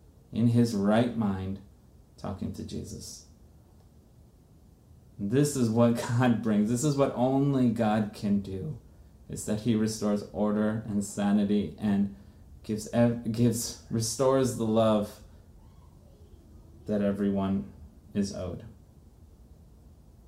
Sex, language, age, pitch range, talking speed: male, English, 30-49, 100-120 Hz, 105 wpm